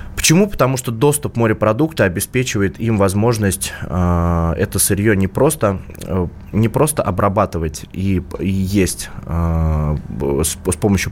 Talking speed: 125 wpm